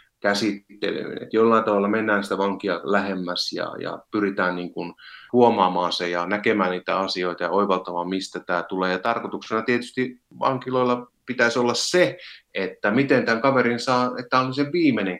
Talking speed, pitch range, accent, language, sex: 160 wpm, 95-120 Hz, native, Finnish, male